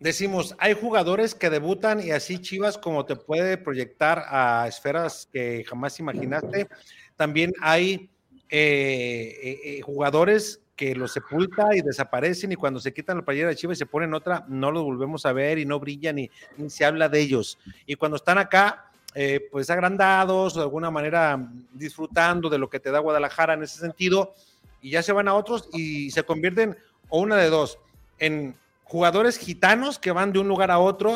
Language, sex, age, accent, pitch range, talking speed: Spanish, male, 40-59, Mexican, 150-190 Hz, 185 wpm